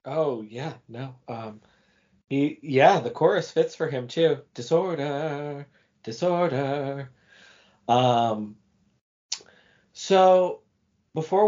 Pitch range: 105-140 Hz